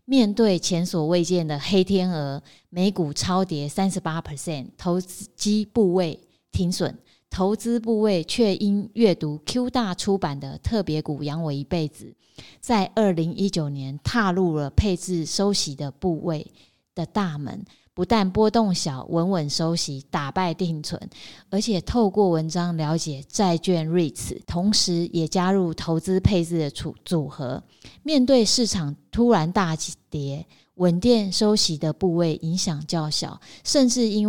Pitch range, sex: 160-200 Hz, female